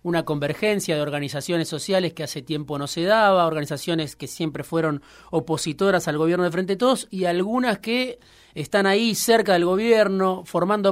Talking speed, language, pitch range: 165 wpm, Spanish, 155-200 Hz